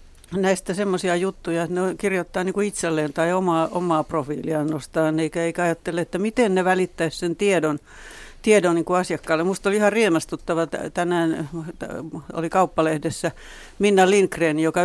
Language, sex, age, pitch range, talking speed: Finnish, female, 60-79, 155-180 Hz, 140 wpm